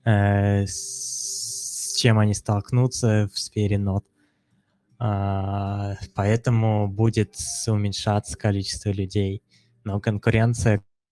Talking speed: 80 wpm